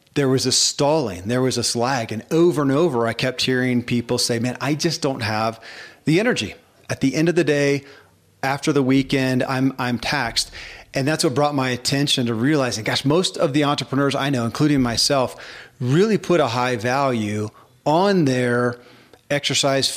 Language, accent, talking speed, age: English, American, 185 wpm, 40-59